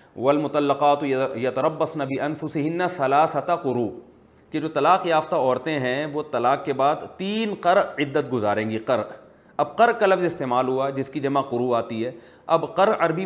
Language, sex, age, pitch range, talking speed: Urdu, male, 40-59, 135-185 Hz, 165 wpm